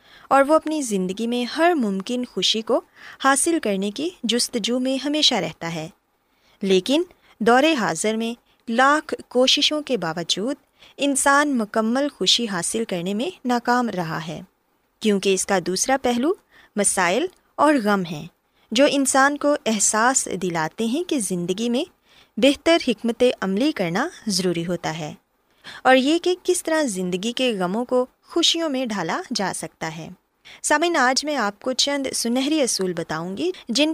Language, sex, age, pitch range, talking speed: Urdu, female, 20-39, 195-285 Hz, 150 wpm